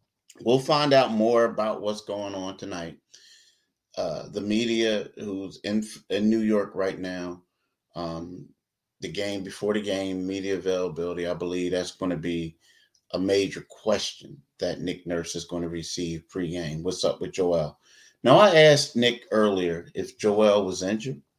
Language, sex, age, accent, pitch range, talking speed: English, male, 30-49, American, 95-110 Hz, 160 wpm